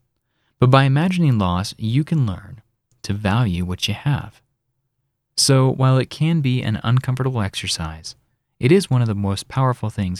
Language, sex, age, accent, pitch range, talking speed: English, male, 30-49, American, 105-135 Hz, 165 wpm